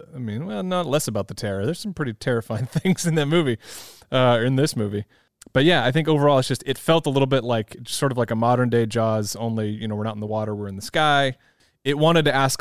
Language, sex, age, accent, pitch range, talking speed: English, male, 20-39, American, 105-130 Hz, 265 wpm